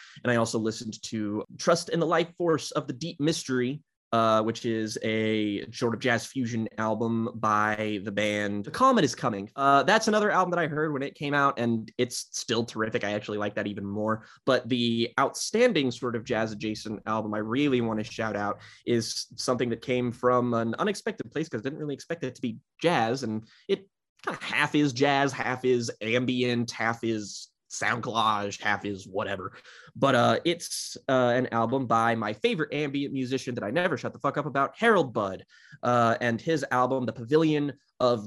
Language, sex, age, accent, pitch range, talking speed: English, male, 20-39, American, 110-140 Hz, 200 wpm